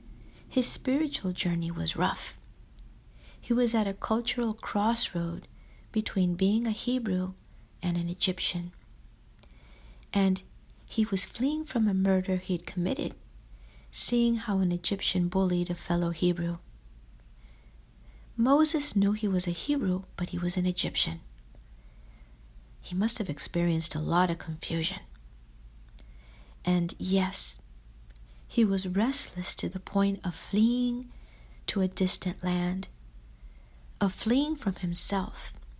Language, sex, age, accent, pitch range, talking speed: English, female, 60-79, American, 170-210 Hz, 120 wpm